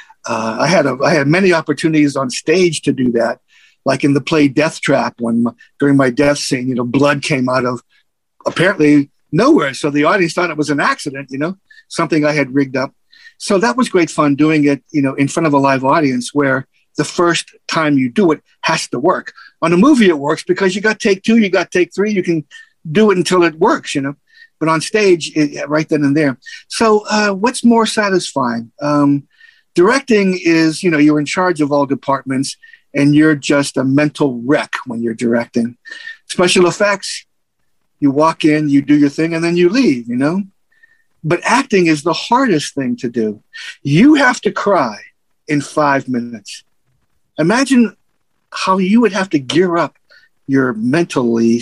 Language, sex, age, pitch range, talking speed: English, male, 60-79, 140-190 Hz, 195 wpm